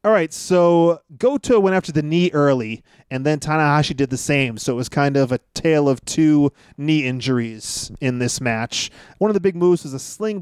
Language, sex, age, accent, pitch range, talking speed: English, male, 30-49, American, 140-190 Hz, 215 wpm